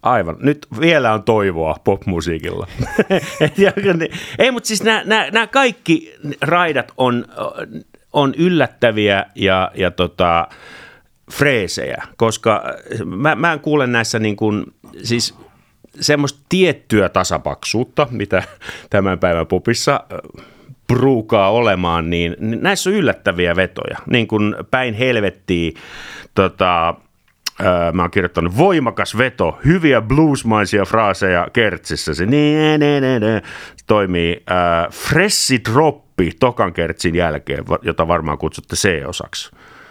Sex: male